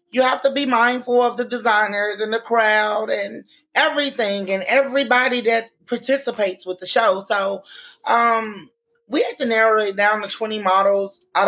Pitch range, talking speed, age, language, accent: 205-265 Hz, 165 wpm, 30-49, English, American